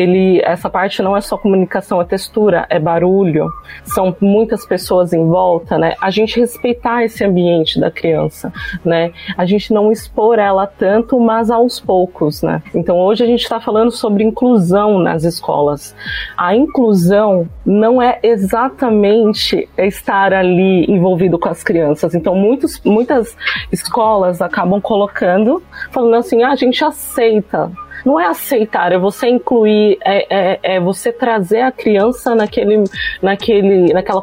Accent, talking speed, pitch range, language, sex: Brazilian, 150 wpm, 180-230 Hz, Portuguese, female